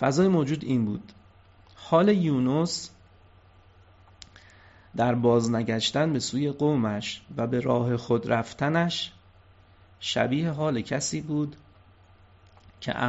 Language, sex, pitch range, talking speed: Persian, male, 95-130 Hz, 95 wpm